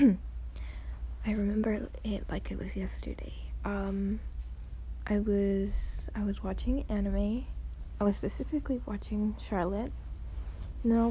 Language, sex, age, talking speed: English, female, 20-39, 110 wpm